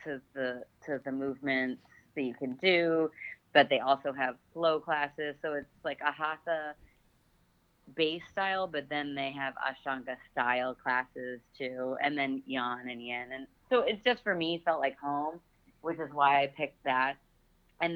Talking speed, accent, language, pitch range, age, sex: 170 wpm, American, English, 130-155 Hz, 30-49, female